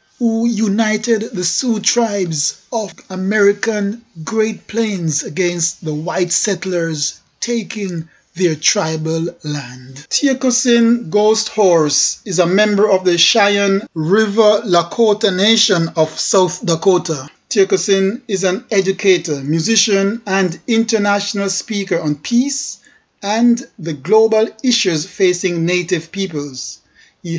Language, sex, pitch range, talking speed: English, male, 170-215 Hz, 110 wpm